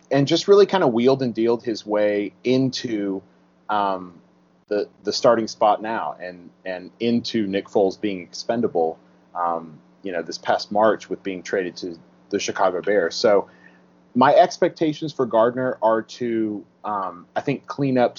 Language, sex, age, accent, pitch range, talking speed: English, male, 30-49, American, 90-120 Hz, 160 wpm